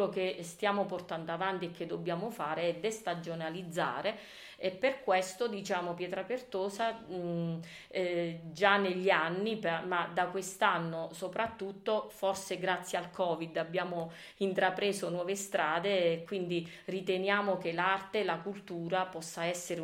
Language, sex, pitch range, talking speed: Italian, female, 170-195 Hz, 135 wpm